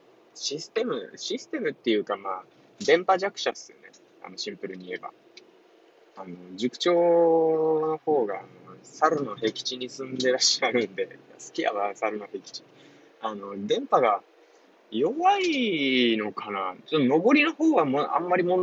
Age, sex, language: 20-39, male, Japanese